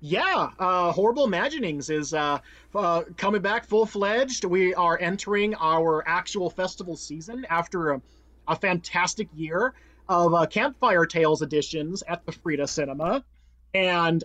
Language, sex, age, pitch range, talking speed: English, male, 30-49, 165-215 Hz, 135 wpm